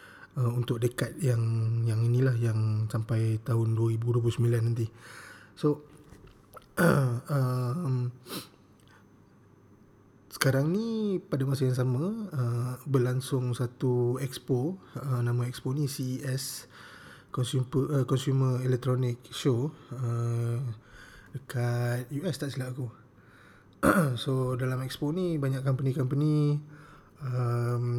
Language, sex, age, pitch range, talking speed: Malay, male, 20-39, 120-135 Hz, 105 wpm